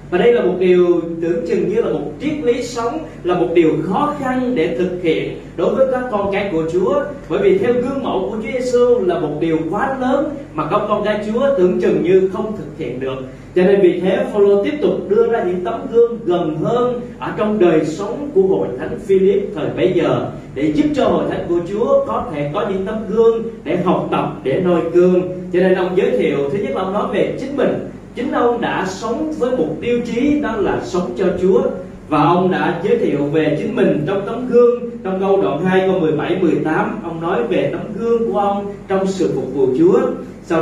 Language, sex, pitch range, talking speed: Vietnamese, male, 170-240 Hz, 225 wpm